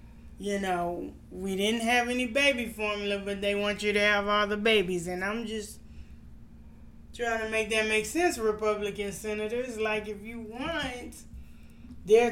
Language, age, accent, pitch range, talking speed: English, 20-39, American, 180-225 Hz, 160 wpm